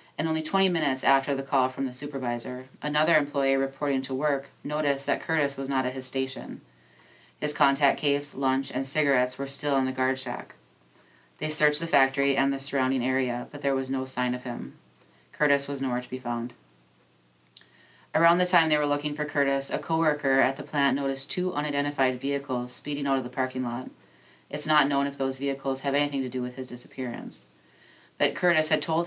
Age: 30-49